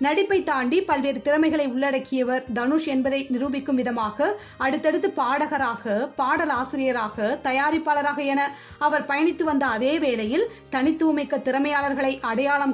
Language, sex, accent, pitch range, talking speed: Tamil, female, native, 265-305 Hz, 110 wpm